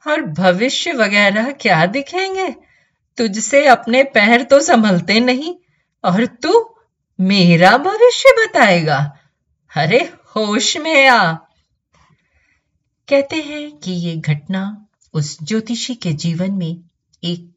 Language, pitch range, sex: Hindi, 150-220 Hz, female